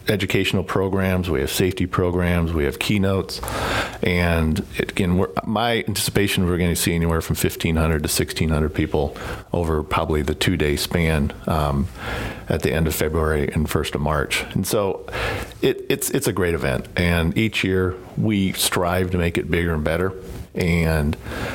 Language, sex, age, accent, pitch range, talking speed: English, male, 50-69, American, 80-95 Hz, 155 wpm